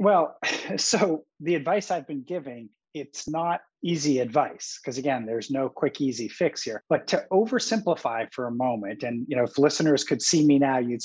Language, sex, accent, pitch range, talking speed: English, male, American, 145-205 Hz, 190 wpm